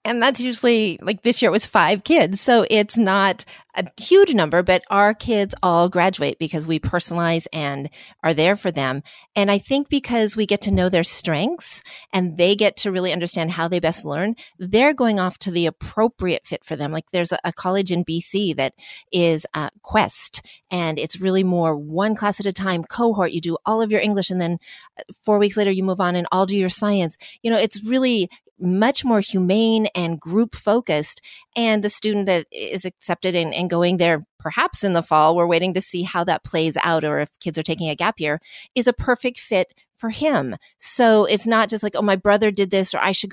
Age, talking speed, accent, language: 30-49, 215 wpm, American, English